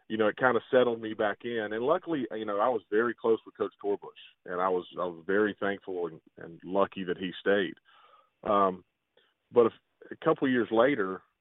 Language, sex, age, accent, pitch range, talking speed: English, male, 40-59, American, 100-120 Hz, 210 wpm